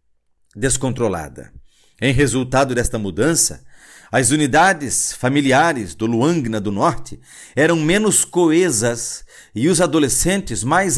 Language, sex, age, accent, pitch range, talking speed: Portuguese, male, 50-69, Brazilian, 115-190 Hz, 105 wpm